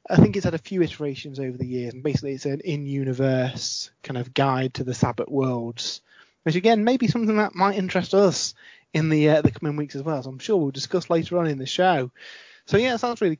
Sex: male